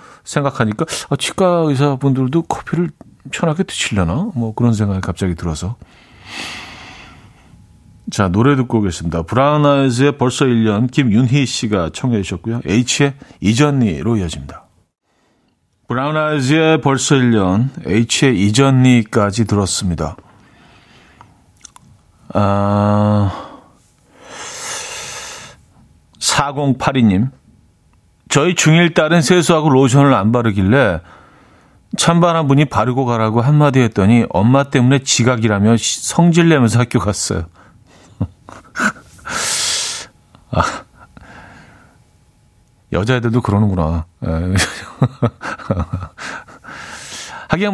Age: 40-59